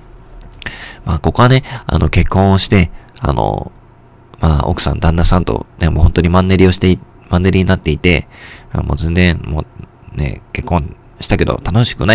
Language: Japanese